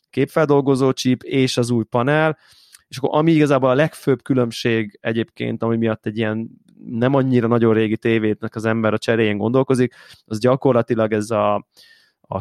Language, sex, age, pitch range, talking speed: Hungarian, male, 20-39, 110-130 Hz, 160 wpm